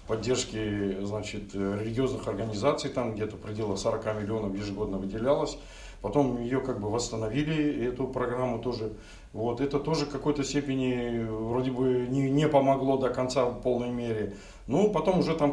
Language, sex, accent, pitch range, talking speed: Russian, male, native, 110-140 Hz, 150 wpm